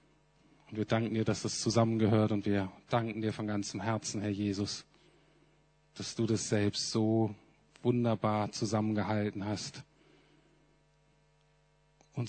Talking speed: 120 wpm